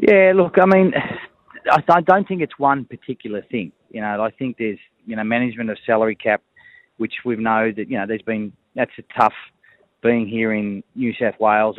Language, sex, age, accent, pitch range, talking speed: English, male, 20-39, Australian, 105-125 Hz, 200 wpm